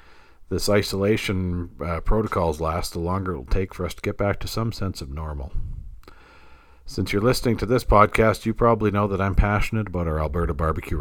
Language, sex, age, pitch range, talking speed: English, male, 50-69, 80-100 Hz, 195 wpm